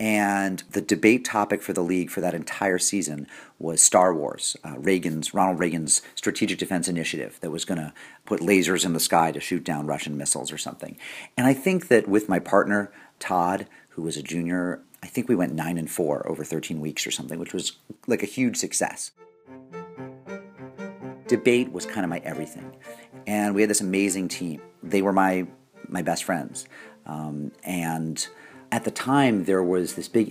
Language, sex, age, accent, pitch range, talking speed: English, male, 40-59, American, 85-115 Hz, 185 wpm